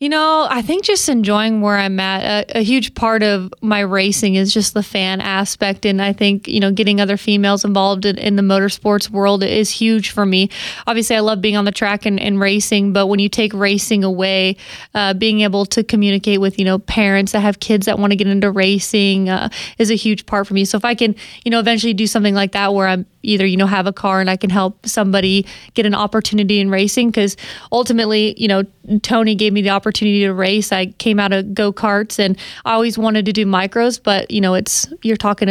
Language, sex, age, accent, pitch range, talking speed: English, female, 30-49, American, 195-220 Hz, 235 wpm